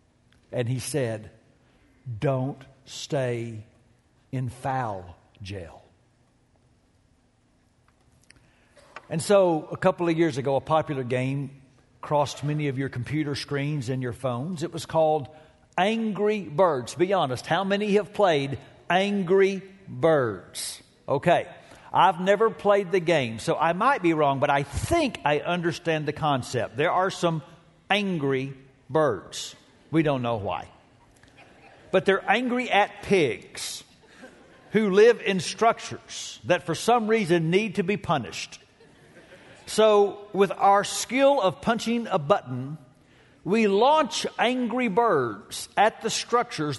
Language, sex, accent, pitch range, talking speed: English, male, American, 135-200 Hz, 125 wpm